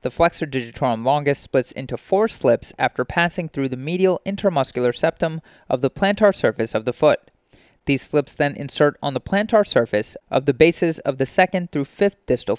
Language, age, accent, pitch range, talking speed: English, 30-49, American, 120-160 Hz, 185 wpm